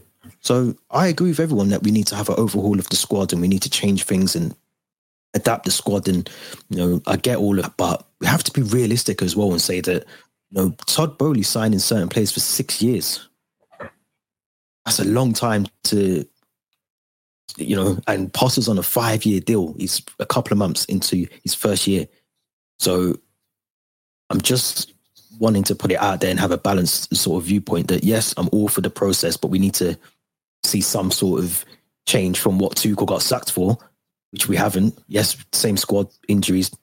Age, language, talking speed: 20-39, English, 200 wpm